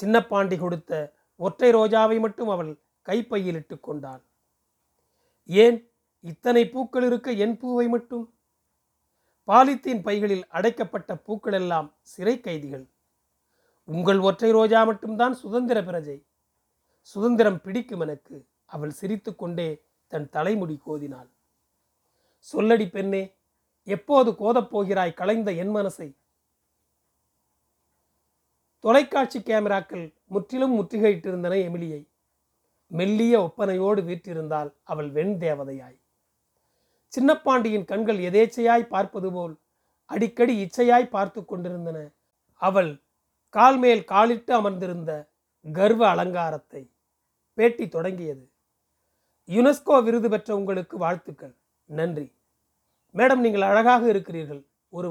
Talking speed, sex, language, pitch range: 90 wpm, male, Tamil, 160-225 Hz